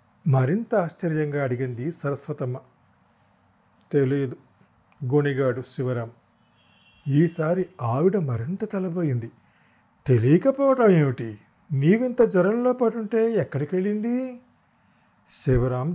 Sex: male